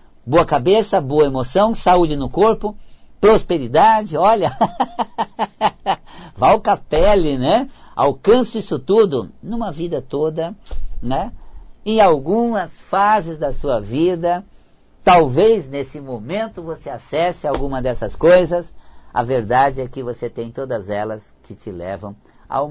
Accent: Brazilian